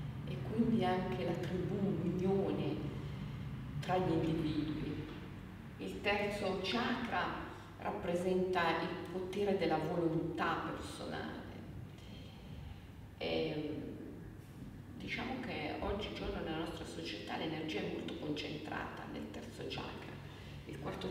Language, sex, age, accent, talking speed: Italian, female, 40-59, native, 95 wpm